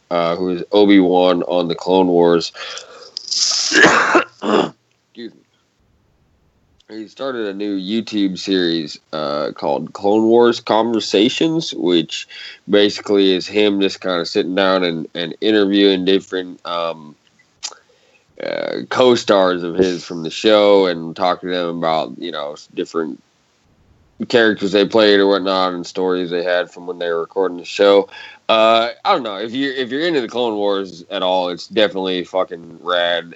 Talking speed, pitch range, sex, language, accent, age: 150 wpm, 85-105 Hz, male, English, American, 20-39